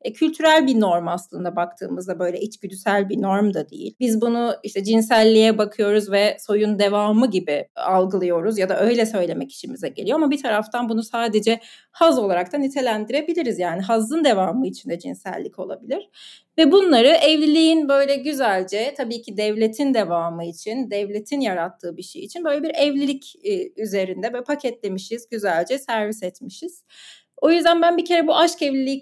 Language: Turkish